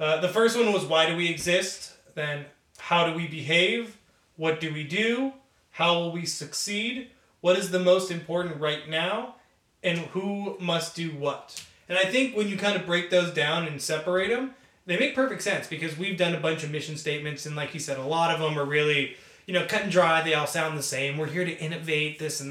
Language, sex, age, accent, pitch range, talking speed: English, male, 20-39, American, 150-180 Hz, 225 wpm